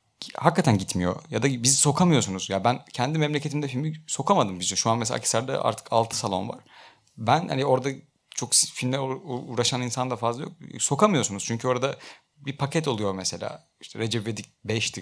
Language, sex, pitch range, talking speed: Turkish, male, 100-130 Hz, 170 wpm